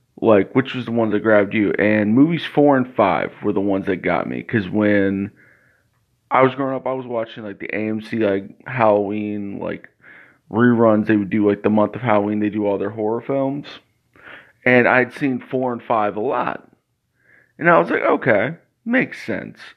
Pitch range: 105-130 Hz